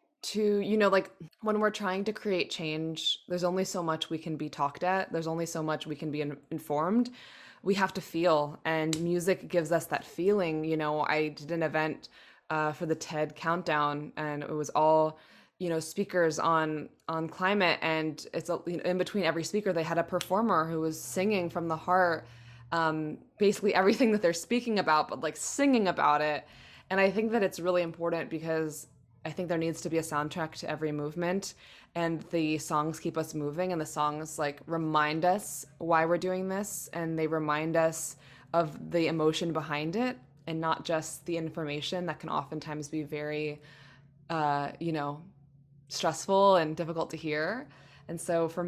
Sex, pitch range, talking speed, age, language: female, 150-180 Hz, 190 wpm, 20-39, English